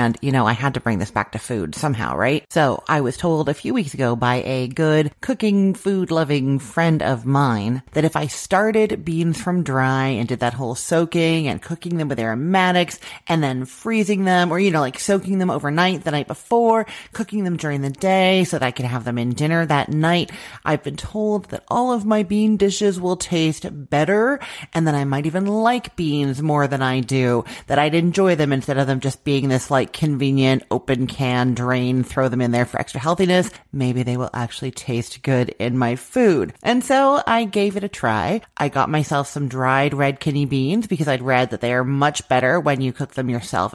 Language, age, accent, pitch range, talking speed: English, 30-49, American, 130-175 Hz, 215 wpm